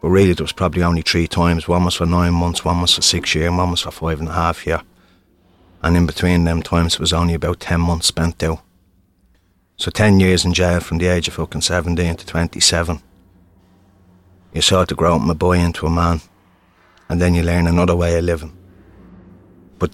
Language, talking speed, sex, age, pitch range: English, 215 wpm, male, 30-49, 85-90 Hz